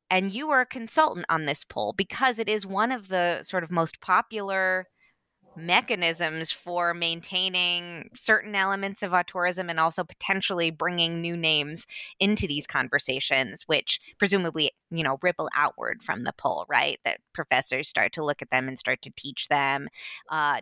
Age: 20-39